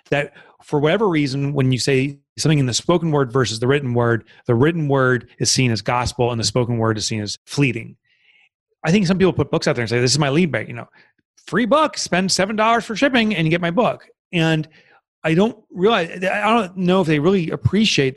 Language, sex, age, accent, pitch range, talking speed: English, male, 30-49, American, 130-175 Hz, 230 wpm